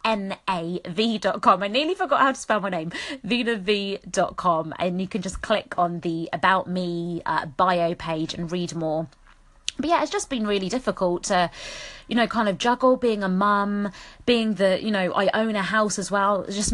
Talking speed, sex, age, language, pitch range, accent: 210 wpm, female, 20-39, English, 180-230 Hz, British